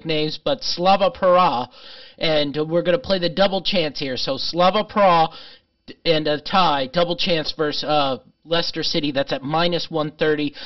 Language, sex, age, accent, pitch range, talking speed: English, male, 40-59, American, 150-180 Hz, 165 wpm